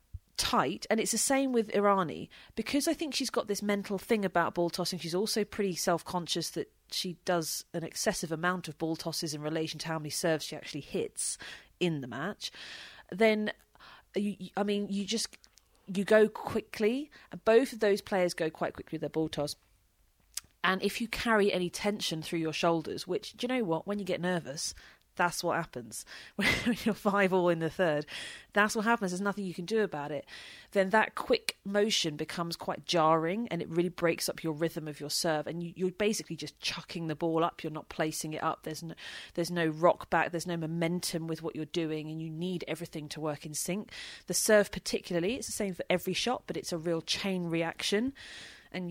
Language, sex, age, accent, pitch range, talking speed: English, female, 30-49, British, 160-205 Hz, 205 wpm